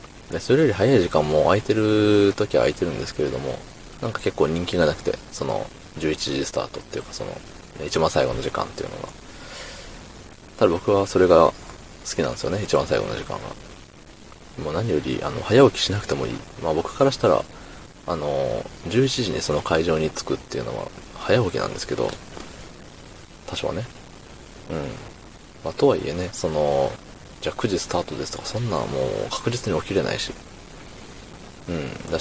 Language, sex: Japanese, male